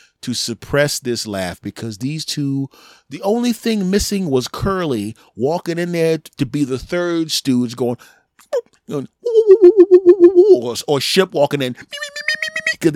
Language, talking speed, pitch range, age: English, 135 wpm, 120-200 Hz, 30-49